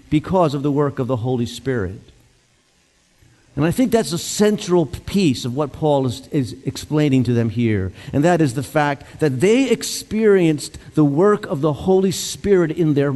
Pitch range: 135-175 Hz